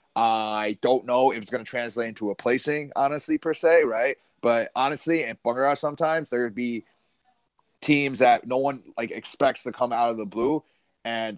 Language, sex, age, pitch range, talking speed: English, male, 30-49, 115-135 Hz, 180 wpm